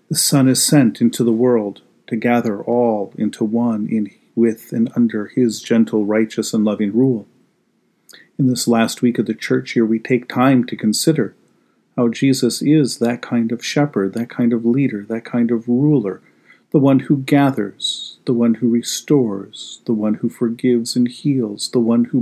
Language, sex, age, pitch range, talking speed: English, male, 50-69, 110-125 Hz, 180 wpm